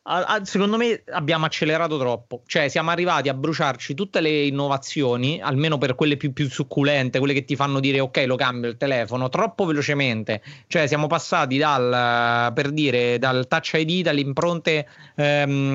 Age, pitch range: 30-49, 125-155 Hz